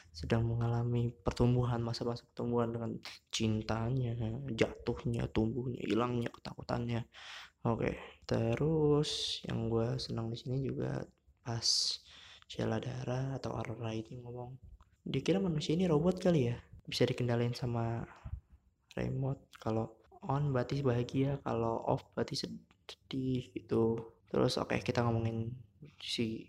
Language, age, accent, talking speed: Indonesian, 20-39, native, 120 wpm